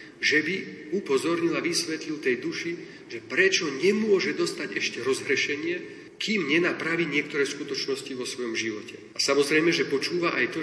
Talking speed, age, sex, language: 145 wpm, 40-59, male, Slovak